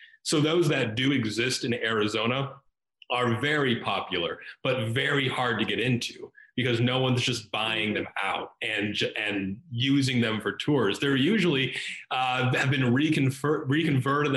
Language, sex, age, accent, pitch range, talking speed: English, male, 30-49, American, 115-135 Hz, 145 wpm